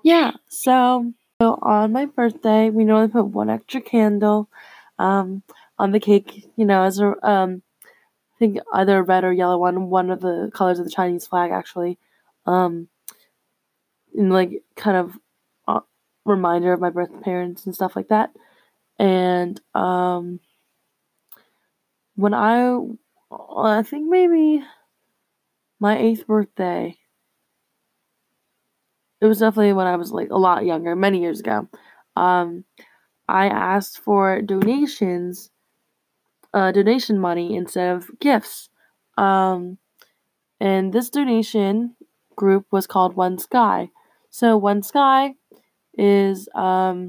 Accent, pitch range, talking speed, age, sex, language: American, 185-220 Hz, 125 wpm, 20-39, female, English